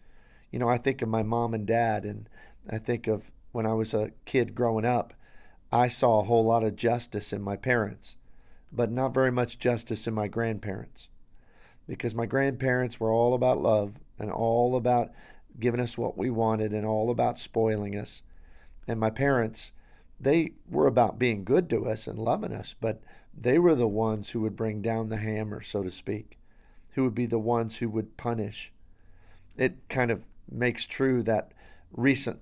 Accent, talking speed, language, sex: American, 185 wpm, English, male